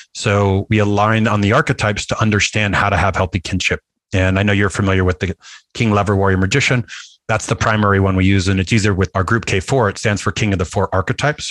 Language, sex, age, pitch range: English, male, 30-49, 95-110 Hz